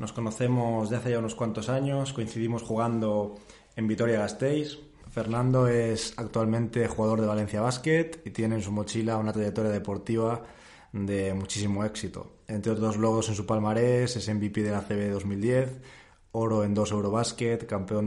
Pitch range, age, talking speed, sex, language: 105-115 Hz, 20-39, 160 wpm, male, Spanish